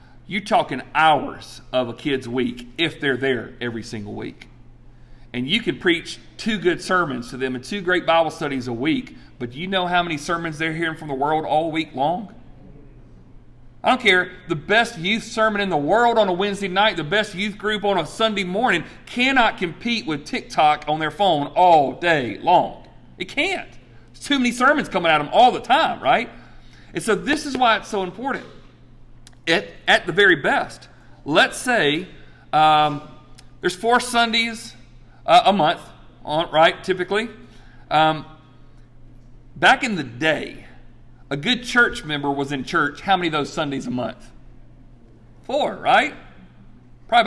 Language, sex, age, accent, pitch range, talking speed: English, male, 40-59, American, 125-200 Hz, 170 wpm